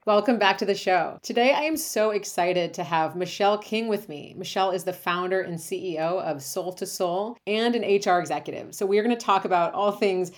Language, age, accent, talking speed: English, 30-49, American, 220 wpm